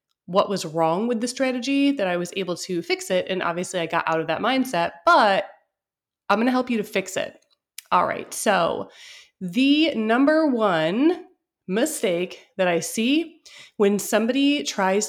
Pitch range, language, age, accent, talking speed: 185-275 Hz, English, 20-39, American, 165 wpm